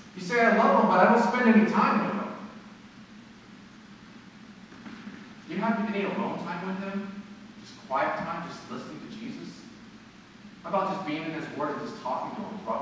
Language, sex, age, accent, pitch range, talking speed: English, male, 30-49, American, 200-225 Hz, 190 wpm